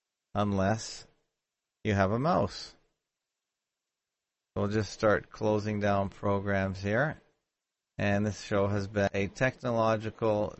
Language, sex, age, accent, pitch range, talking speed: English, male, 30-49, American, 100-120 Hz, 110 wpm